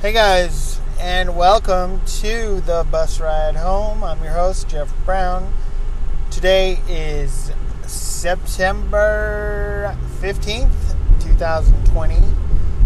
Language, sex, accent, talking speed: English, male, American, 90 wpm